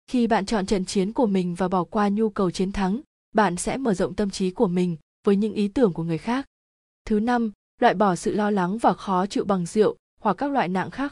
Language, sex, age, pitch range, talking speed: Vietnamese, female, 20-39, 185-230 Hz, 250 wpm